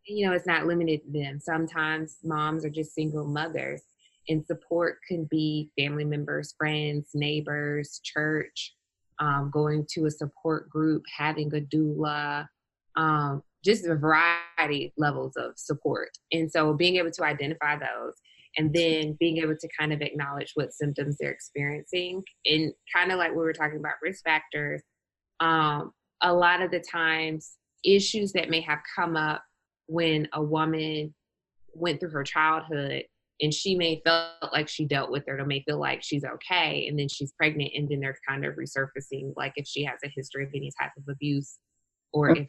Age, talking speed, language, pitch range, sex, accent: 20-39, 175 wpm, English, 145-165 Hz, female, American